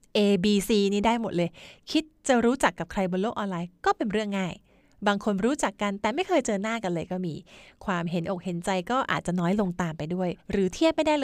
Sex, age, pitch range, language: female, 30-49, 175-220 Hz, Thai